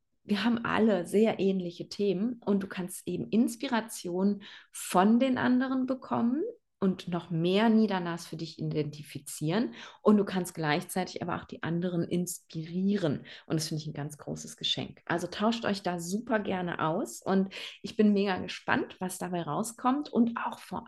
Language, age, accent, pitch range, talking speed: German, 30-49, German, 155-200 Hz, 165 wpm